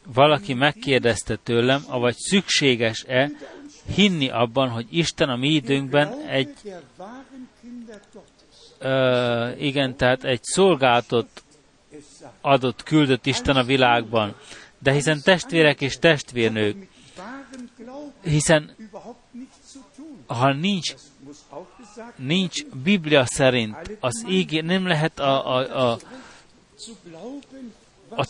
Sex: male